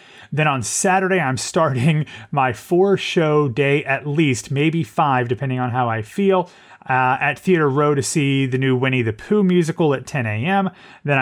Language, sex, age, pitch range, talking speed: English, male, 30-49, 125-155 Hz, 175 wpm